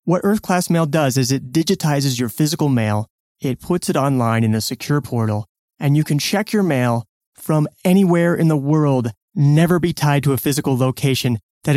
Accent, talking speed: American, 190 wpm